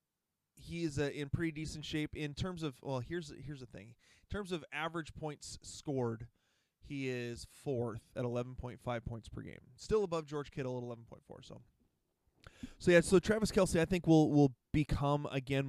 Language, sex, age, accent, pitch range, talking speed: English, male, 20-39, American, 130-170 Hz, 180 wpm